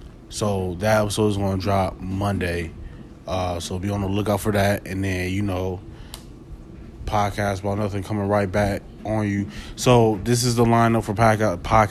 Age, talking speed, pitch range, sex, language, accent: 20-39, 175 wpm, 95-110 Hz, male, English, American